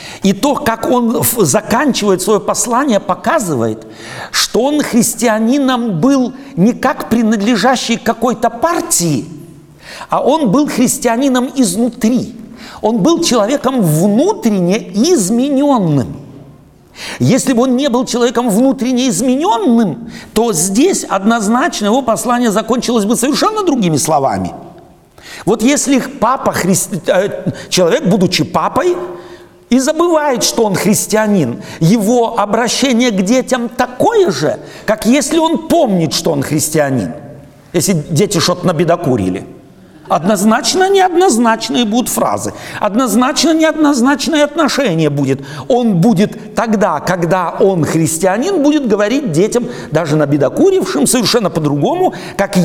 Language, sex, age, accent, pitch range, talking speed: Russian, male, 60-79, native, 185-255 Hz, 110 wpm